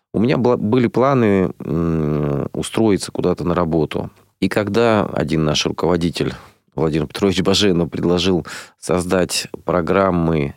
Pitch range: 80-105 Hz